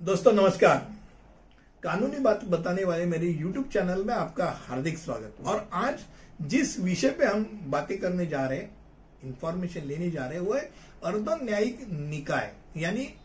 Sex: male